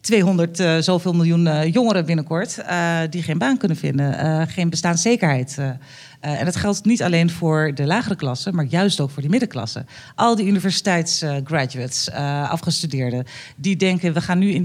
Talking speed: 180 wpm